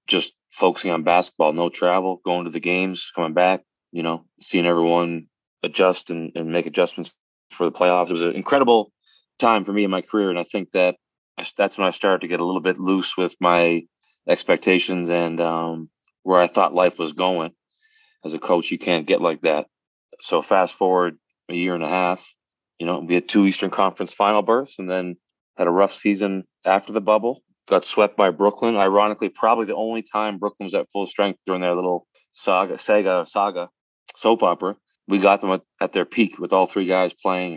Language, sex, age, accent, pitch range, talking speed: English, male, 30-49, American, 85-100 Hz, 200 wpm